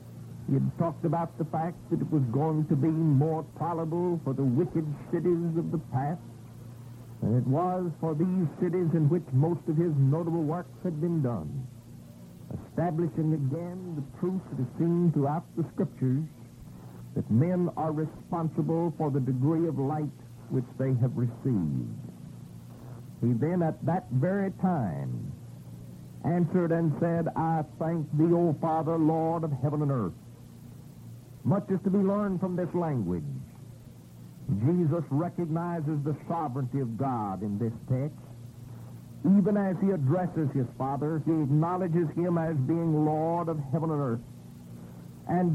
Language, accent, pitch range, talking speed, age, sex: English, American, 125-170 Hz, 150 wpm, 60-79, male